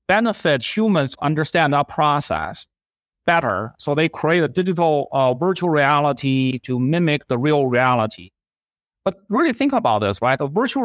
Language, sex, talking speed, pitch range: English, male, 155 wpm, 125-170 Hz